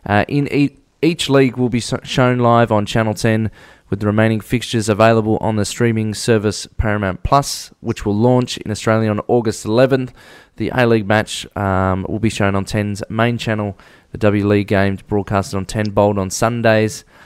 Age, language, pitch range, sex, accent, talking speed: 20-39, English, 105-125 Hz, male, Australian, 185 wpm